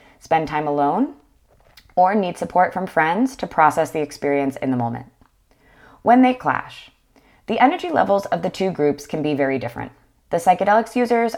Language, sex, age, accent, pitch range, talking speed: English, female, 20-39, American, 140-200 Hz, 170 wpm